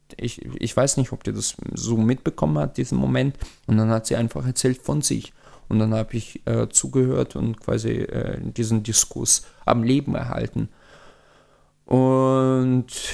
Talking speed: 160 wpm